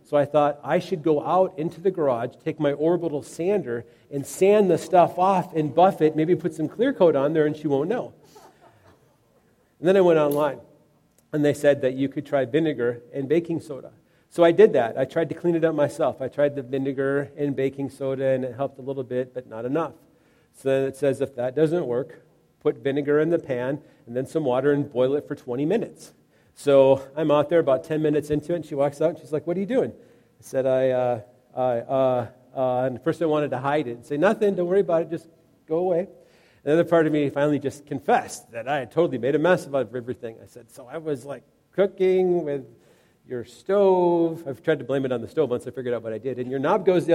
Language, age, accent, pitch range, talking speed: English, 40-59, American, 135-165 Hz, 240 wpm